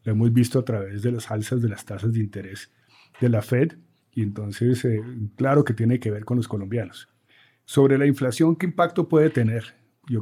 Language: Spanish